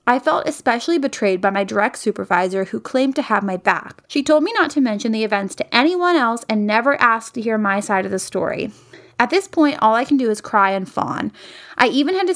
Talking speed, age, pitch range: 245 wpm, 20-39, 205-280 Hz